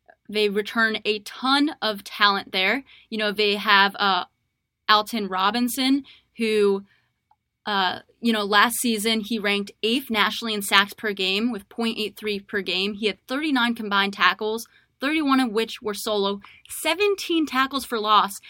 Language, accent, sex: English, American, female